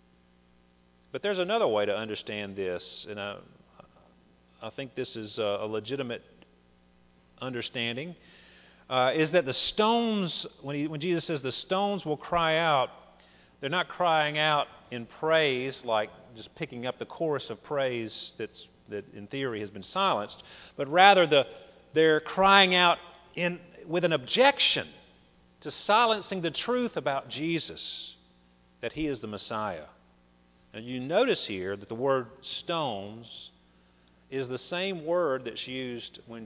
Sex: male